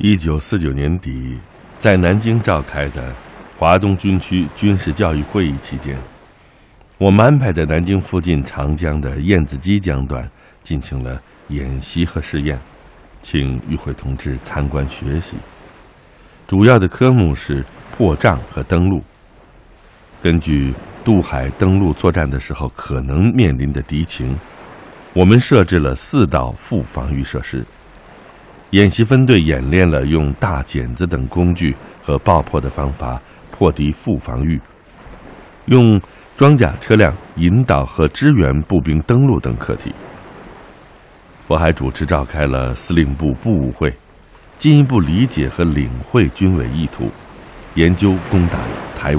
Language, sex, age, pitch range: Chinese, male, 60-79, 70-100 Hz